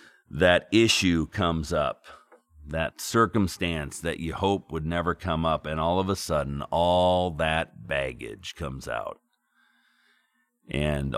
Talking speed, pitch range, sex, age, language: 130 wpm, 80-105 Hz, male, 40-59, English